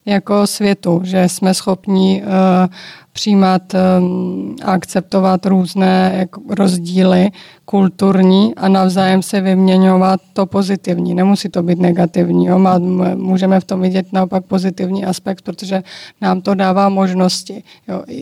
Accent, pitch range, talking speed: native, 185-195 Hz, 115 wpm